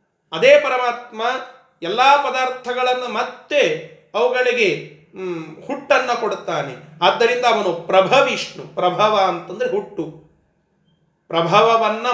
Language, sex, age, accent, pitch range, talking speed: Kannada, male, 30-49, native, 180-260 Hz, 75 wpm